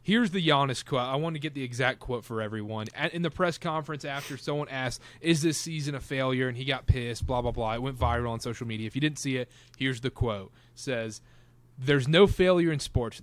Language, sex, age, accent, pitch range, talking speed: English, male, 30-49, American, 120-150 Hz, 235 wpm